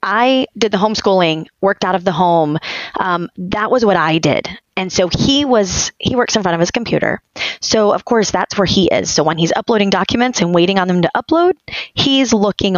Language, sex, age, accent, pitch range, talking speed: English, female, 30-49, American, 165-210 Hz, 215 wpm